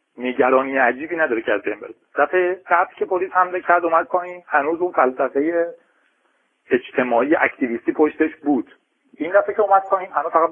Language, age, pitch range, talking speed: Persian, 40-59, 120-180 Hz, 165 wpm